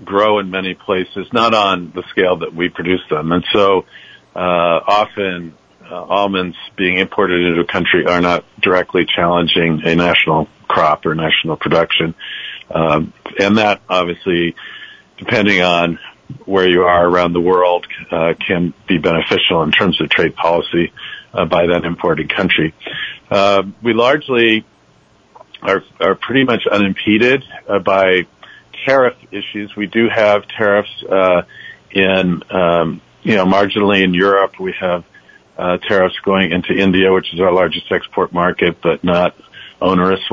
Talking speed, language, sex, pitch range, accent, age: 145 wpm, English, male, 90-100 Hz, American, 50-69